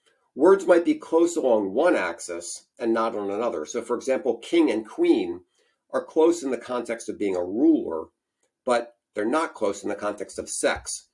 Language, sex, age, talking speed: English, male, 50-69, 190 wpm